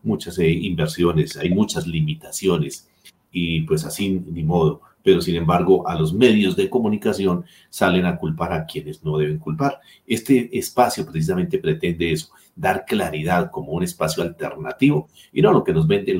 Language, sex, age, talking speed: Spanish, male, 40-59, 160 wpm